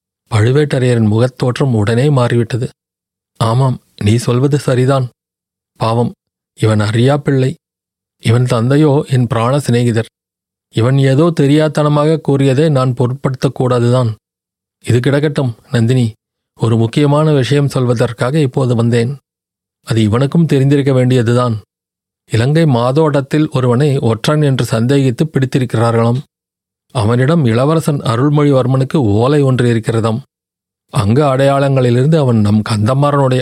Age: 30-49